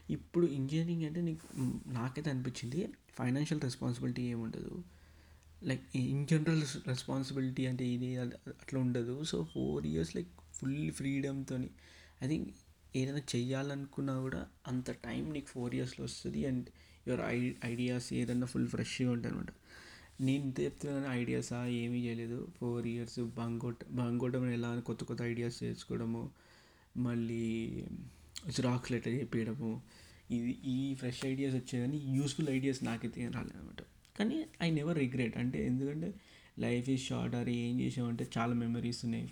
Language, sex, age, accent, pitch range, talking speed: Telugu, male, 20-39, native, 115-135 Hz, 125 wpm